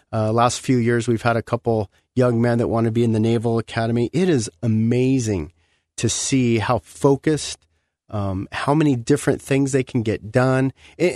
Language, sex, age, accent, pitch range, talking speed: English, male, 40-59, American, 105-130 Hz, 195 wpm